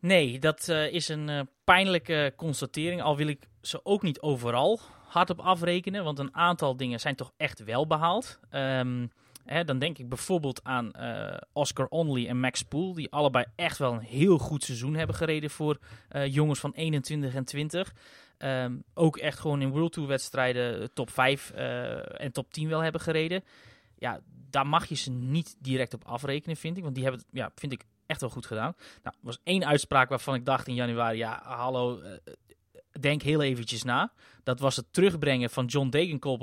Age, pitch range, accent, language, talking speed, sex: 20-39, 125-160 Hz, Dutch, Dutch, 195 wpm, male